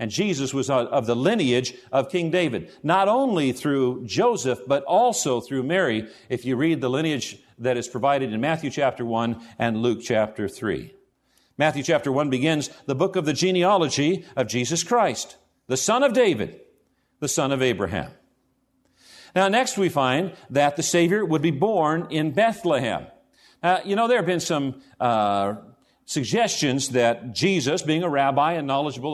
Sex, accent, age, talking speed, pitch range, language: male, American, 50-69, 165 wpm, 130-180 Hz, English